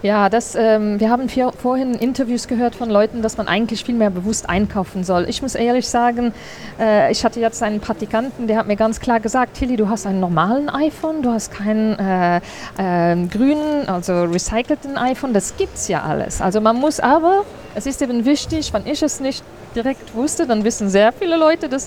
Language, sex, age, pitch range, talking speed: German, female, 50-69, 205-255 Hz, 205 wpm